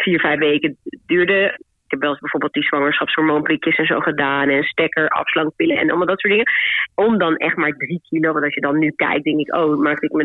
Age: 30-49